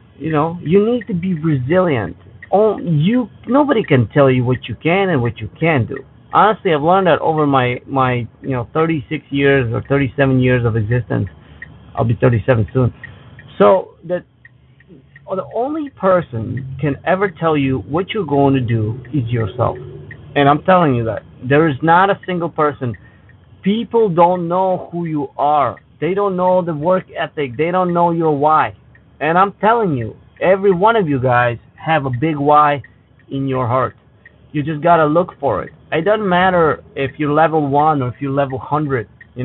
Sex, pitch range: male, 125-165 Hz